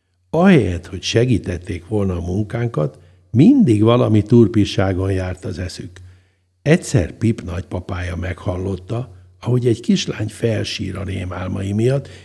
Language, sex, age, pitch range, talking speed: Hungarian, male, 60-79, 95-115 Hz, 115 wpm